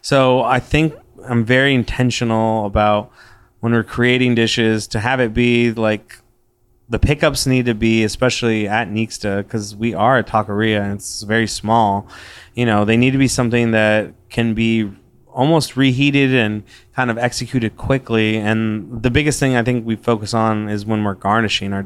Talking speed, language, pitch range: 175 wpm, English, 110-125 Hz